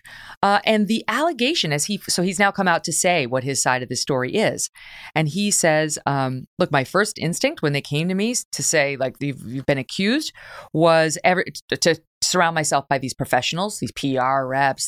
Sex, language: female, English